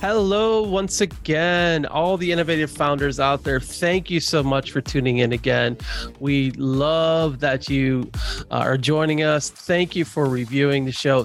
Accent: American